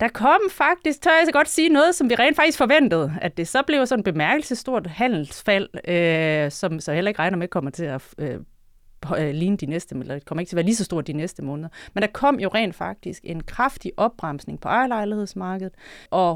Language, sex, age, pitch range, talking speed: Danish, female, 30-49, 160-225 Hz, 205 wpm